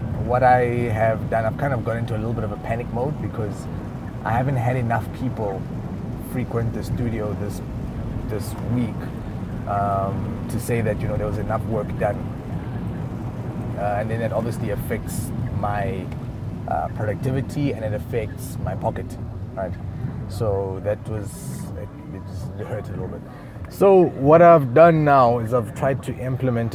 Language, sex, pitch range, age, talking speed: English, male, 100-120 Hz, 30-49, 165 wpm